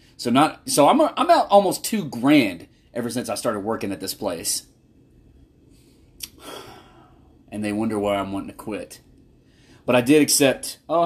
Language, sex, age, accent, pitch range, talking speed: English, male, 30-49, American, 100-125 Hz, 165 wpm